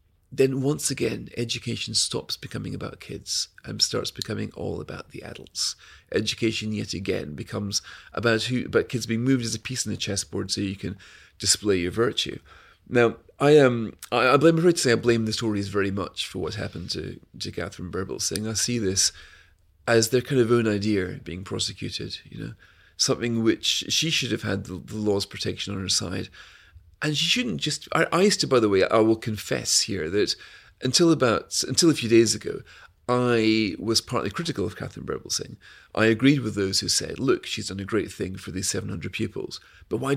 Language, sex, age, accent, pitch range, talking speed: English, male, 40-59, British, 95-120 Hz, 200 wpm